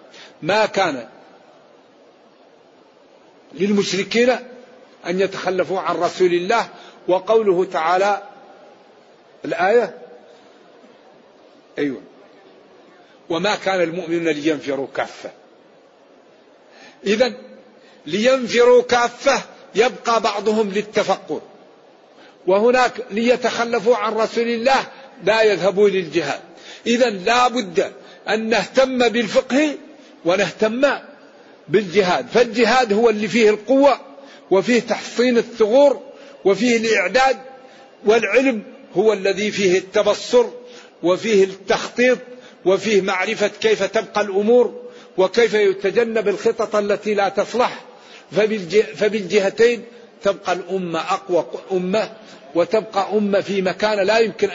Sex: male